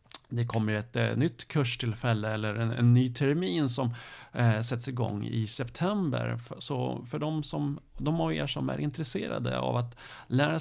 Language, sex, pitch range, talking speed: Swedish, male, 115-140 Hz, 170 wpm